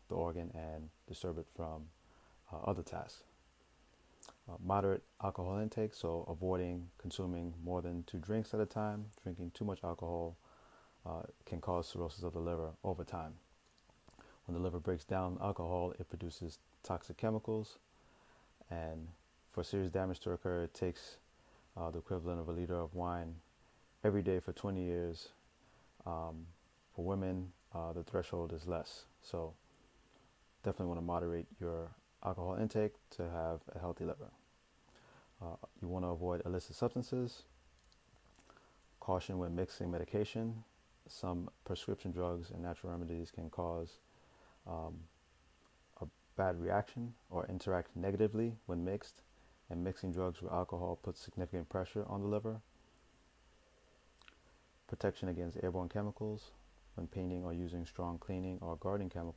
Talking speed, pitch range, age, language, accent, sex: 140 wpm, 85-95 Hz, 30-49, English, American, male